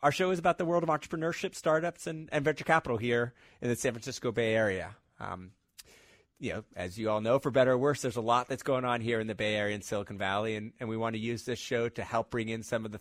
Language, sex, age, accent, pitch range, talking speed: English, male, 30-49, American, 110-145 Hz, 275 wpm